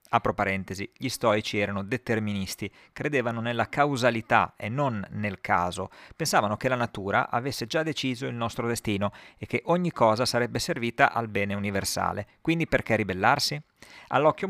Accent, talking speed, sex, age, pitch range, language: native, 150 wpm, male, 50-69, 105-140 Hz, Italian